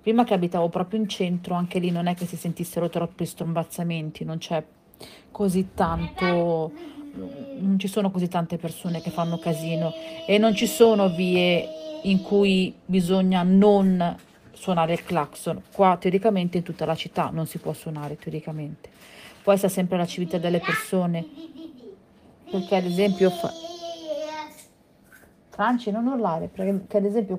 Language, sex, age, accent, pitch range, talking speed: Italian, female, 40-59, native, 165-205 Hz, 145 wpm